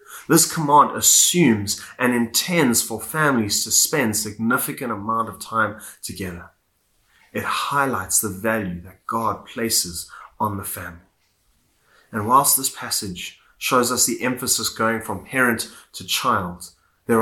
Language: English